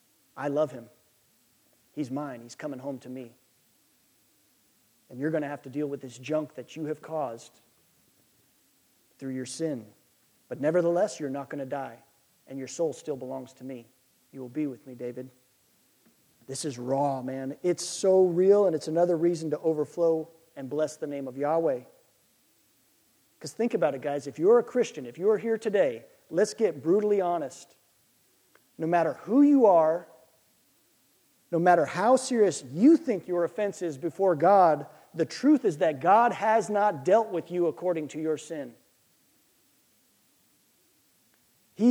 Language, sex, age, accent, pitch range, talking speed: English, male, 40-59, American, 140-200 Hz, 165 wpm